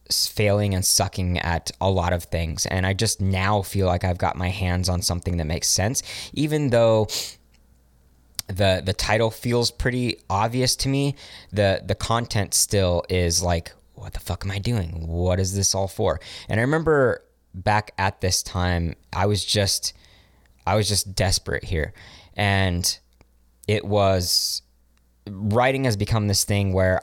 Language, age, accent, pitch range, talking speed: English, 20-39, American, 85-105 Hz, 165 wpm